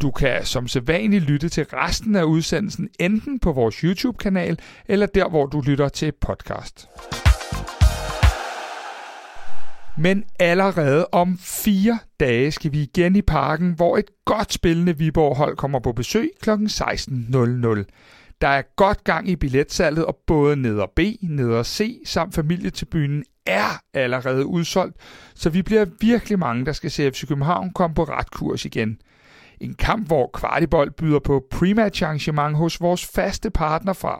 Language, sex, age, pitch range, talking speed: Danish, male, 60-79, 140-190 Hz, 155 wpm